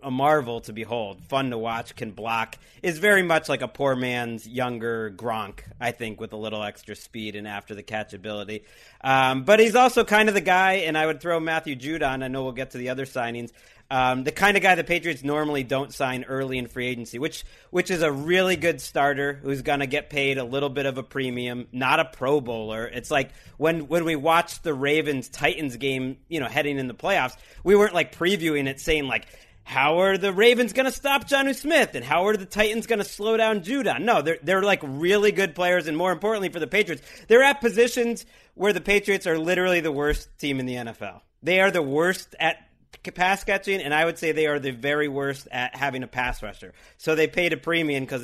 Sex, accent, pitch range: male, American, 125-180 Hz